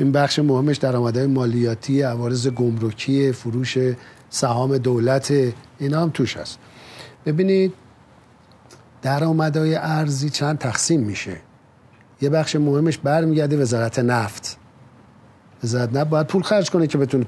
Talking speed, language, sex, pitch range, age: 115 wpm, Persian, male, 120-150 Hz, 50-69